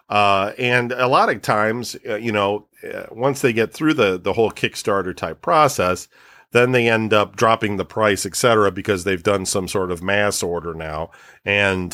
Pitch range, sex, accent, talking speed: 95-115 Hz, male, American, 190 wpm